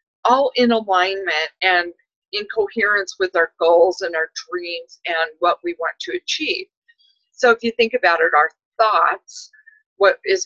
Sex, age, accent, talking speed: female, 50-69, American, 160 wpm